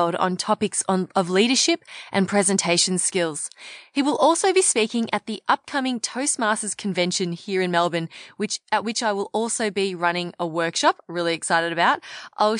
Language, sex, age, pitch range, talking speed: English, female, 20-39, 180-235 Hz, 165 wpm